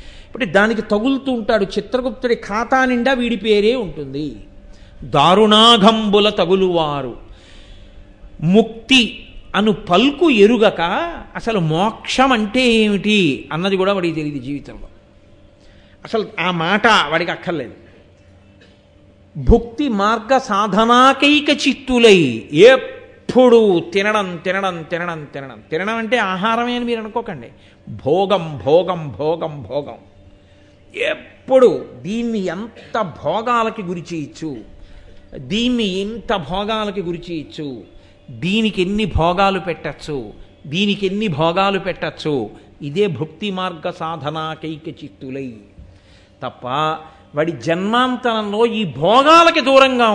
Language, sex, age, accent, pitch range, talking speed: Telugu, male, 50-69, native, 145-230 Hz, 95 wpm